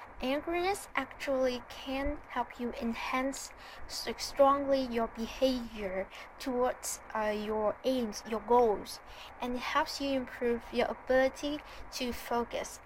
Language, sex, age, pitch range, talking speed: English, female, 10-29, 230-270 Hz, 110 wpm